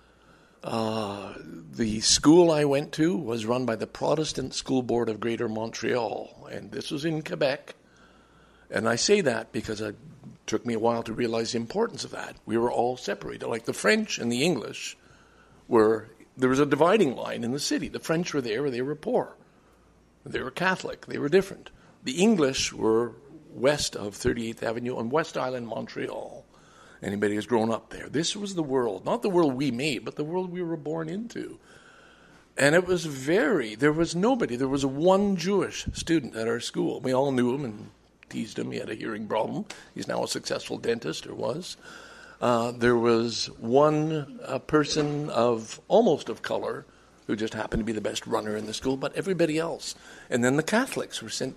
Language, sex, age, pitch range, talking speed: English, male, 60-79, 115-165 Hz, 190 wpm